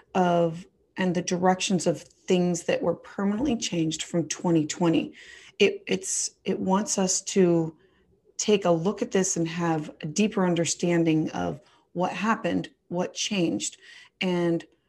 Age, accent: 30-49, American